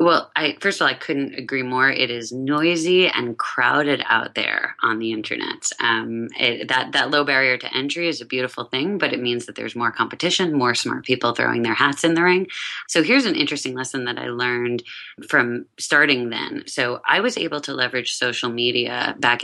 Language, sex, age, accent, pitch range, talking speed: English, female, 20-39, American, 120-145 Hz, 200 wpm